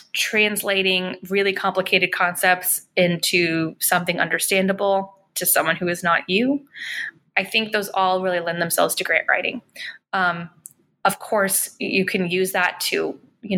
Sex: female